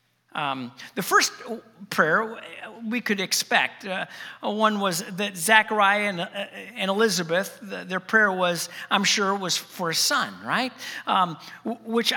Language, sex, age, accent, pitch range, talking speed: English, male, 50-69, American, 175-235 Hz, 150 wpm